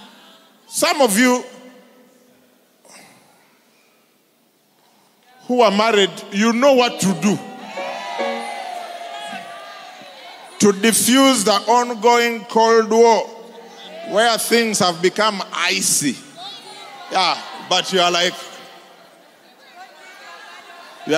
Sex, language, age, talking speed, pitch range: male, English, 50-69, 80 wpm, 185-245 Hz